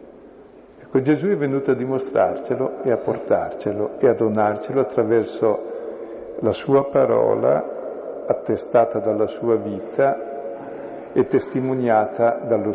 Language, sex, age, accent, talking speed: Italian, male, 50-69, native, 105 wpm